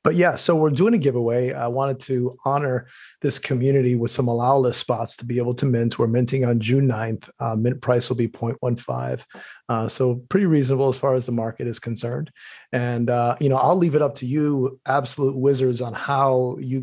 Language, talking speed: English, 215 wpm